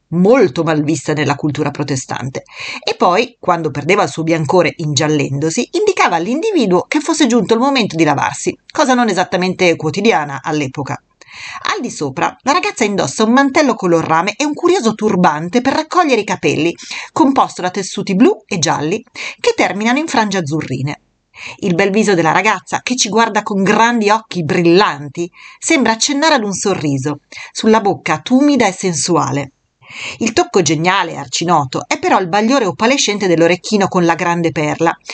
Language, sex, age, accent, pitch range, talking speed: Italian, female, 40-59, native, 160-260 Hz, 160 wpm